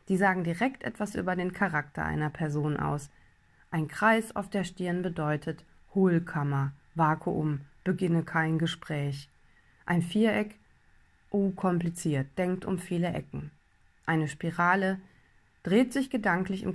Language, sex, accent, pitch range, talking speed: German, female, German, 145-195 Hz, 125 wpm